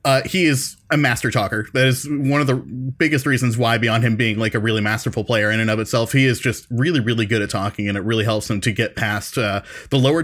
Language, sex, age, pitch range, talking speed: English, male, 20-39, 110-130 Hz, 265 wpm